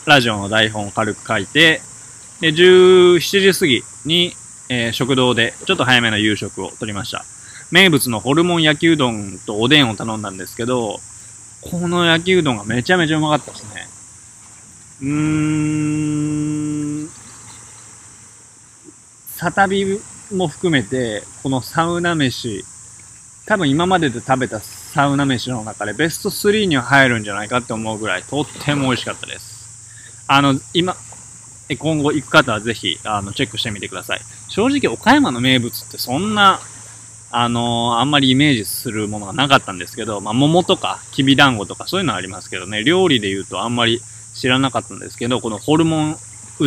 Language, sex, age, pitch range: Japanese, male, 20-39, 110-145 Hz